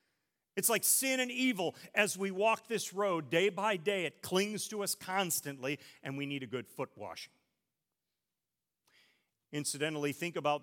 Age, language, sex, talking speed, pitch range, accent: 40-59, English, male, 160 wpm, 145-200 Hz, American